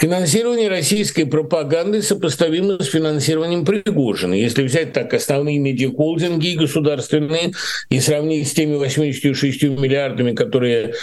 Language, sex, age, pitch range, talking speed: Russian, male, 50-69, 135-170 Hz, 110 wpm